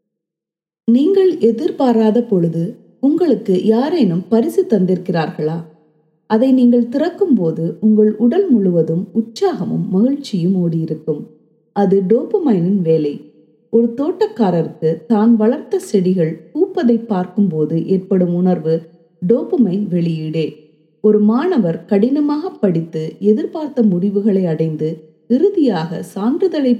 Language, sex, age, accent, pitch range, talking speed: Tamil, female, 30-49, native, 165-240 Hz, 90 wpm